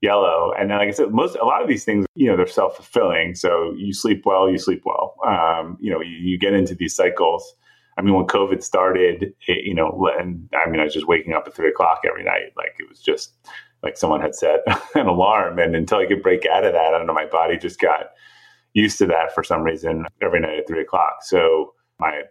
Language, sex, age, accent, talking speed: English, male, 30-49, American, 240 wpm